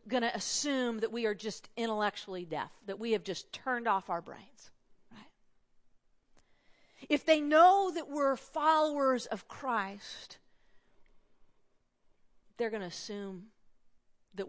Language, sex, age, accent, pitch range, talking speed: English, female, 40-59, American, 180-225 Hz, 130 wpm